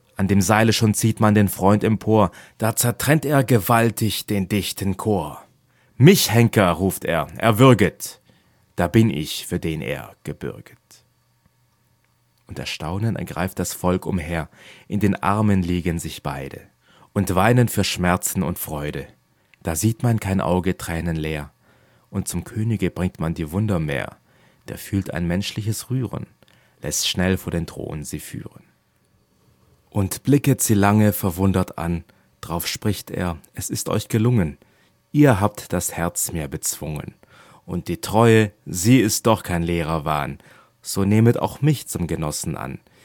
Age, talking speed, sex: 30-49, 150 wpm, male